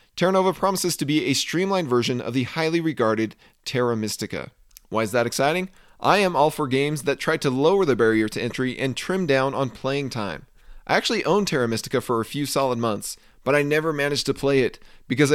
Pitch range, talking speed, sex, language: 125-165 Hz, 215 wpm, male, English